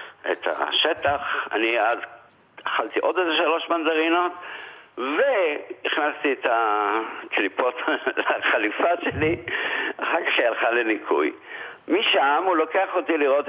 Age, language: 60-79, Hebrew